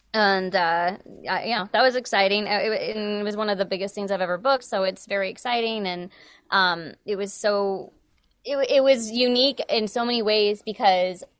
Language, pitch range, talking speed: English, 195-230 Hz, 185 wpm